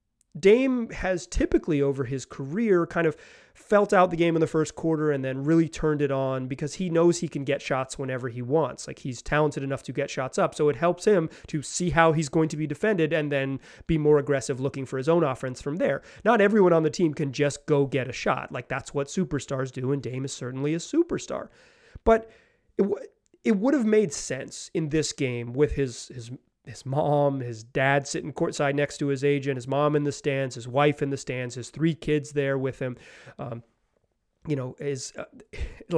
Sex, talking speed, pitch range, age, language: male, 215 wpm, 135-170 Hz, 30-49, English